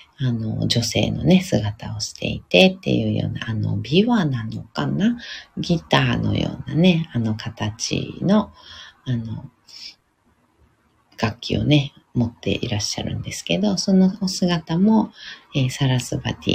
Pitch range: 115-180 Hz